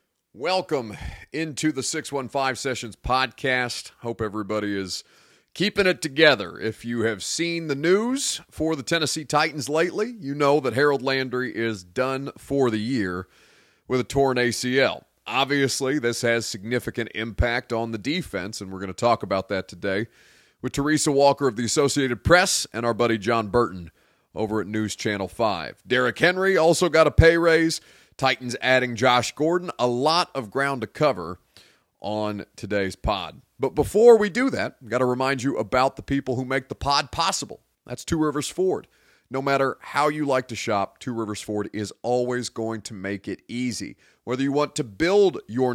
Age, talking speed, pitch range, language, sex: 30-49, 175 wpm, 115-155 Hz, English, male